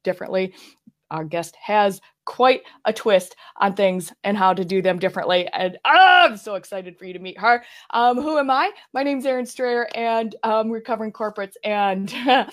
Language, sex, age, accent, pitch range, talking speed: English, female, 20-39, American, 185-235 Hz, 190 wpm